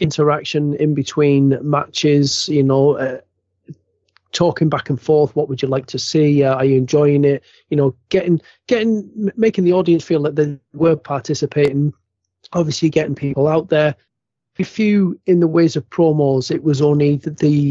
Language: English